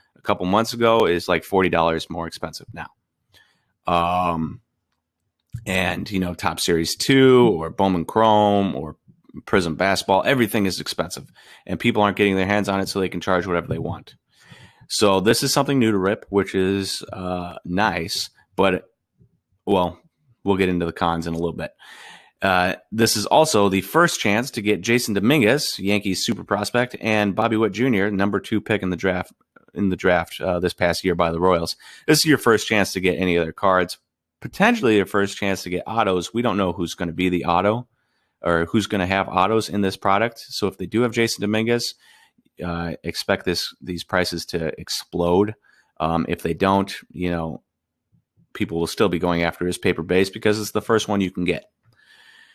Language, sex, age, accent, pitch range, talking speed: English, male, 30-49, American, 90-110 Hz, 195 wpm